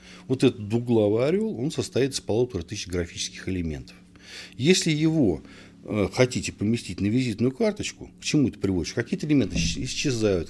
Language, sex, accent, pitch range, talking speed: Russian, male, native, 90-130 Hz, 145 wpm